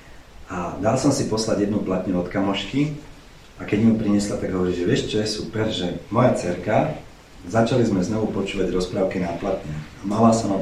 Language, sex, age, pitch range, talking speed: Slovak, male, 40-59, 90-110 Hz, 190 wpm